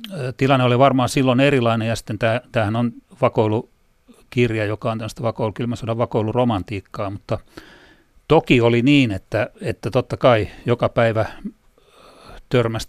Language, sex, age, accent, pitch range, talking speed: Finnish, male, 40-59, native, 110-125 Hz, 120 wpm